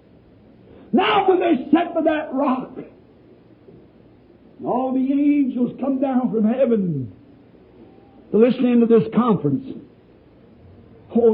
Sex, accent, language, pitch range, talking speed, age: male, American, English, 200-275 Hz, 105 wpm, 60-79